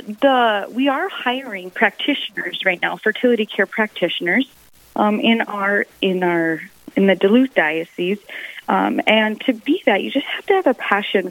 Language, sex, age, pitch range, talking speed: English, female, 30-49, 180-230 Hz, 165 wpm